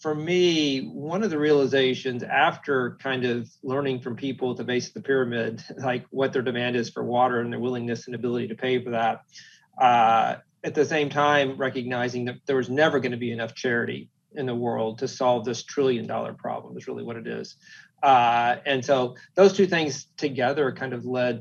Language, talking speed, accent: English, 205 wpm, American